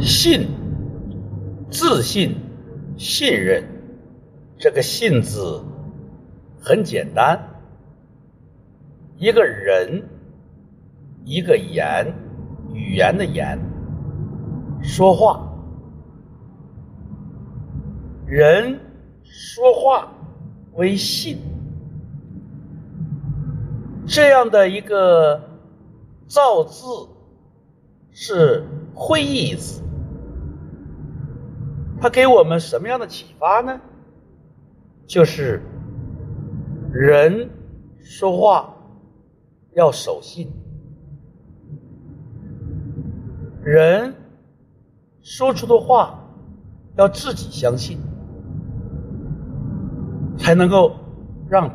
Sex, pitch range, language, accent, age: male, 130-195 Hz, Chinese, native, 60-79